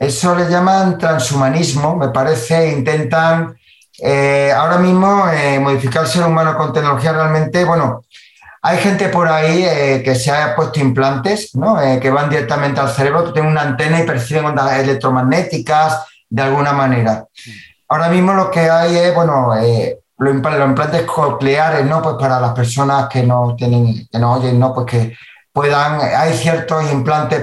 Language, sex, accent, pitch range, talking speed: Spanish, male, Spanish, 135-165 Hz, 175 wpm